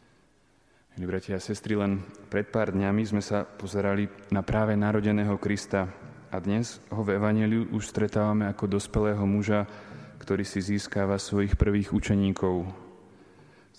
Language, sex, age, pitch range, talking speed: Slovak, male, 20-39, 95-105 Hz, 130 wpm